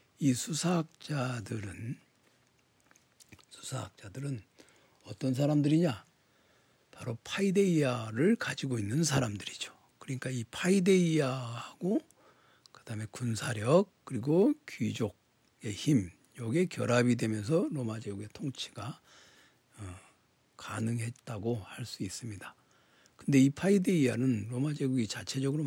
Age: 60-79